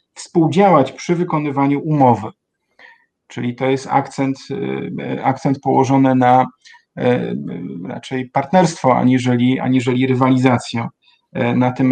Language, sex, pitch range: Polish, male, 130-145 Hz